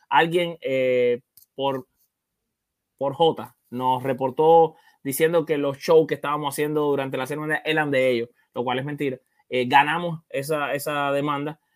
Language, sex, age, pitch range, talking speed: English, male, 20-39, 135-165 Hz, 150 wpm